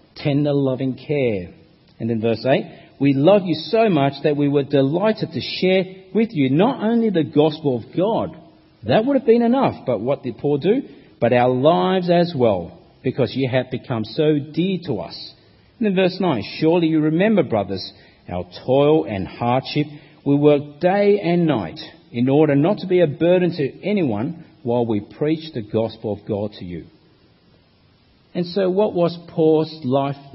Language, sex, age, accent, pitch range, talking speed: English, male, 50-69, Australian, 130-185 Hz, 180 wpm